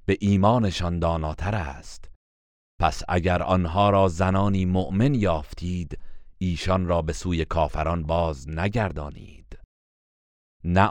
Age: 40-59